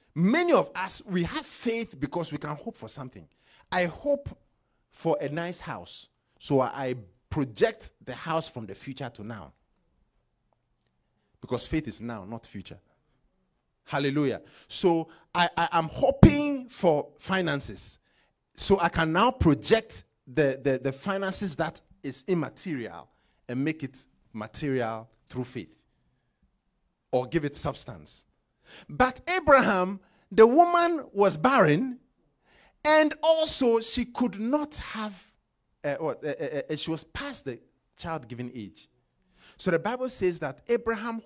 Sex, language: male, English